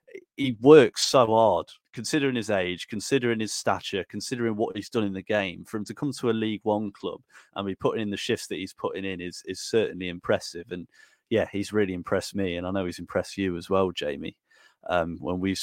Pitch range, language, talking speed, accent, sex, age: 95-115 Hz, English, 225 wpm, British, male, 30-49